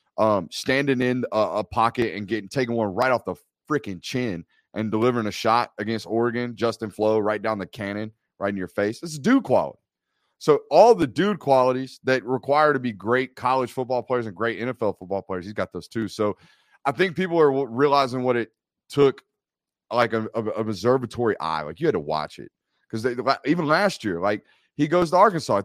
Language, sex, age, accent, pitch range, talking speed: English, male, 30-49, American, 110-145 Hz, 205 wpm